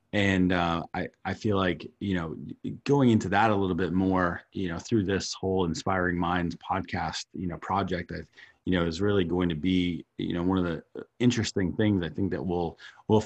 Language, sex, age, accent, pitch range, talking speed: English, male, 30-49, American, 90-115 Hz, 210 wpm